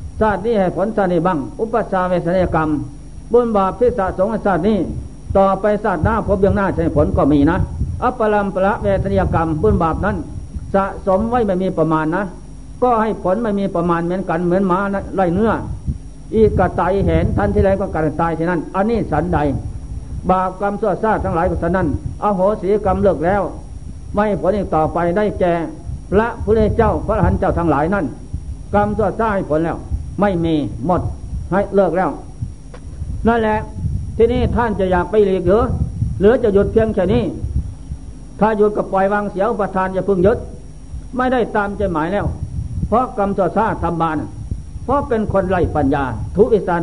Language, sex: Thai, male